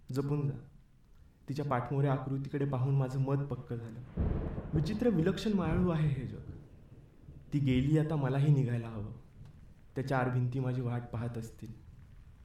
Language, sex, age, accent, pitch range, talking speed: Marathi, male, 20-39, native, 120-150 Hz, 70 wpm